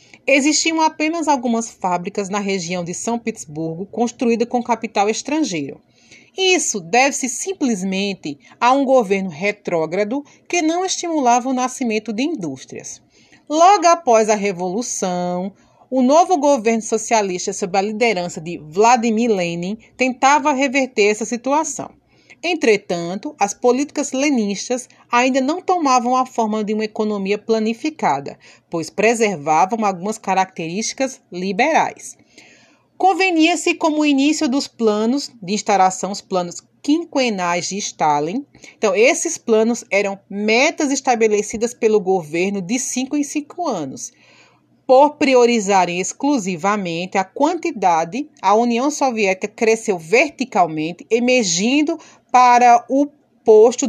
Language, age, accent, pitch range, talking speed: Portuguese, 30-49, Brazilian, 200-285 Hz, 115 wpm